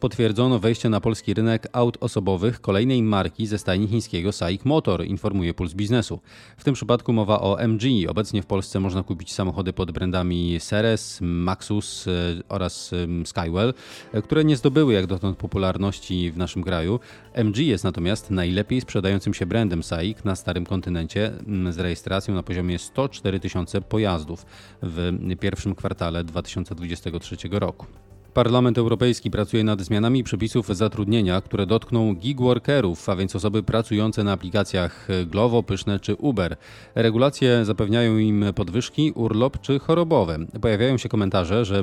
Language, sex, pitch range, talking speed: Polish, male, 95-115 Hz, 140 wpm